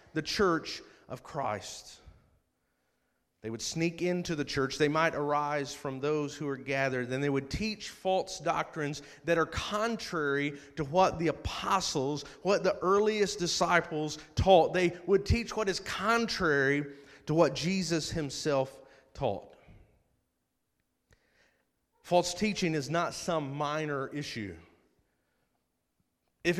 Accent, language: American, English